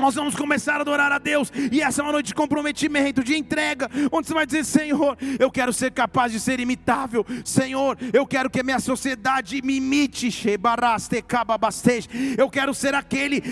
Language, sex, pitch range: Portuguese, male, 245-290 Hz